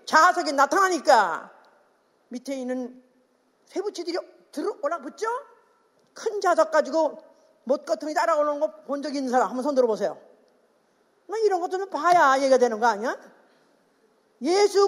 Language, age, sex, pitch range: Korean, 40-59, female, 270-360 Hz